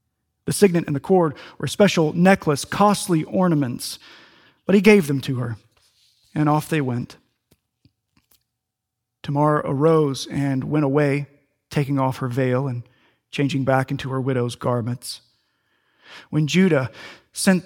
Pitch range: 125-180 Hz